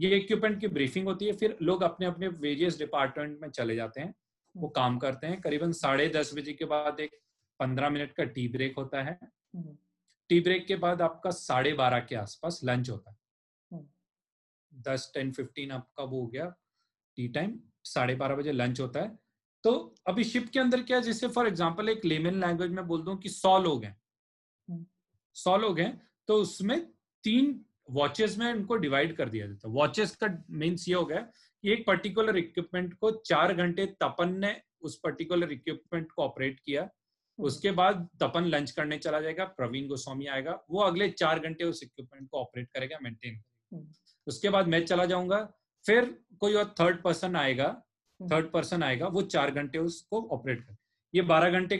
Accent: native